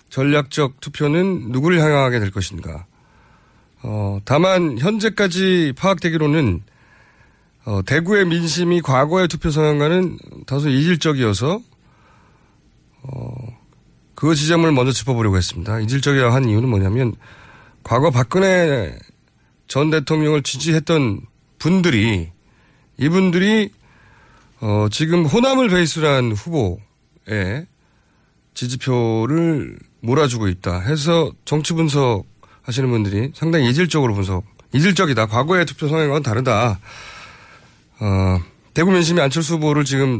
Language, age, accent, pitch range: Korean, 30-49, native, 110-160 Hz